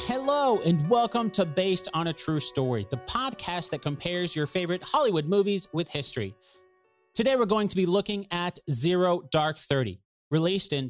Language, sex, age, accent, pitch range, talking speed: English, male, 30-49, American, 135-180 Hz, 170 wpm